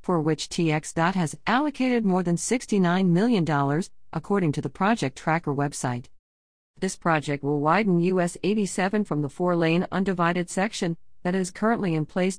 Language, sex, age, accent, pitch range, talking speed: English, female, 40-59, American, 145-185 Hz, 145 wpm